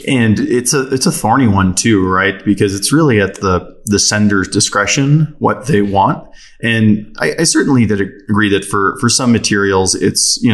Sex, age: male, 20-39